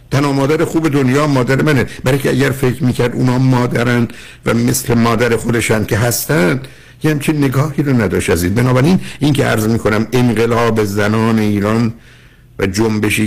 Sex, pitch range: male, 110-140 Hz